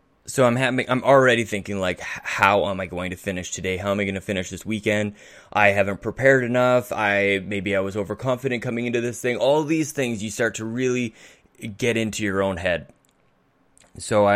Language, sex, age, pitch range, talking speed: English, male, 20-39, 95-120 Hz, 200 wpm